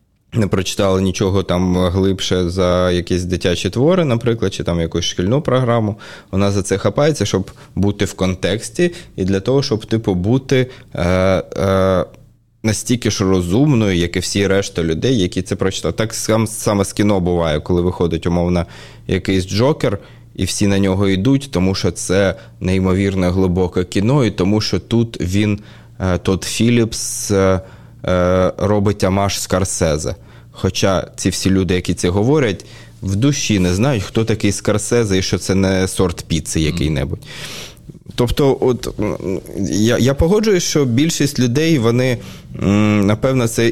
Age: 20-39